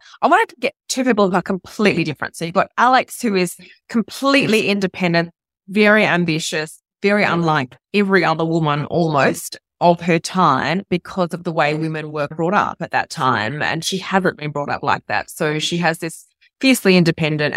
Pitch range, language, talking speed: 155-195 Hz, English, 185 wpm